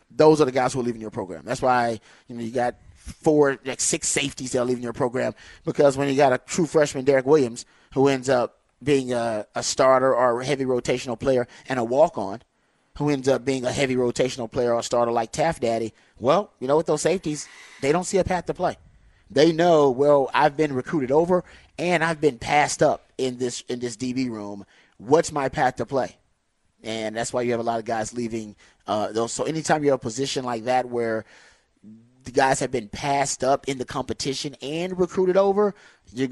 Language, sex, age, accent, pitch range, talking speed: English, male, 30-49, American, 115-145 Hz, 215 wpm